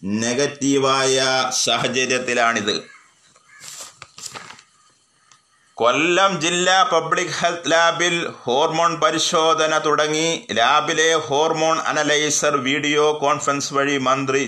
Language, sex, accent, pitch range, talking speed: Malayalam, male, native, 135-160 Hz, 70 wpm